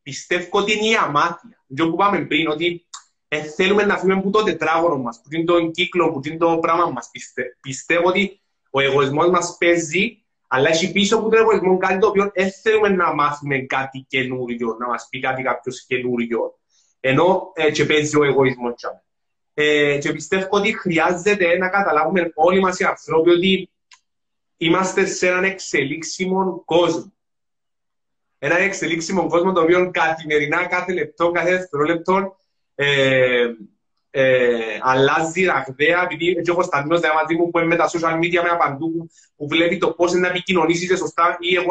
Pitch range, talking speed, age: 155-195 Hz, 120 wpm, 30-49